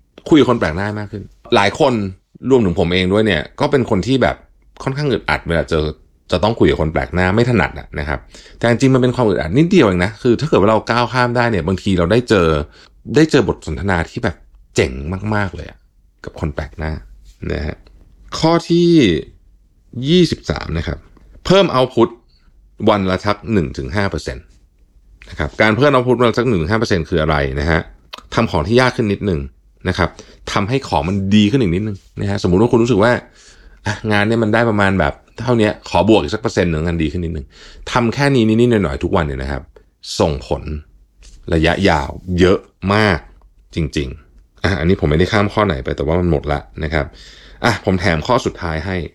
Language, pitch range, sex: Thai, 75-105 Hz, male